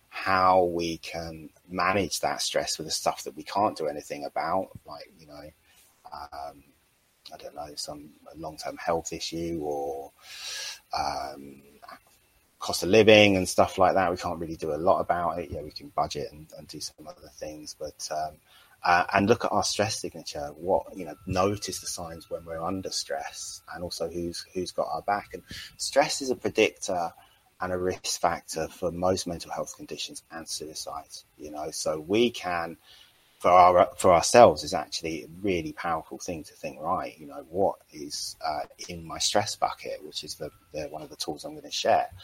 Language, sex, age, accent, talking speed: English, male, 30-49, British, 190 wpm